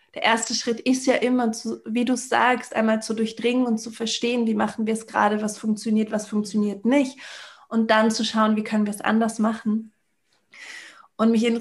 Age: 20-39